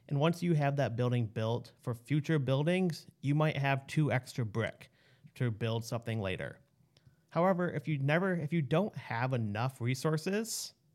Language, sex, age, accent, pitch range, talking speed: English, male, 30-49, American, 120-155 Hz, 160 wpm